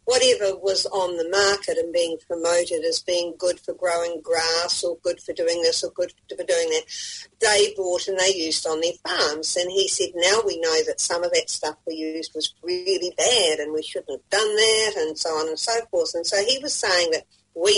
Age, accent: 50-69, Australian